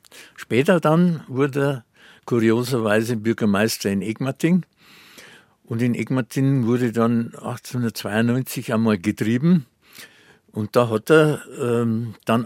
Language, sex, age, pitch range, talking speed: German, male, 60-79, 105-135 Hz, 105 wpm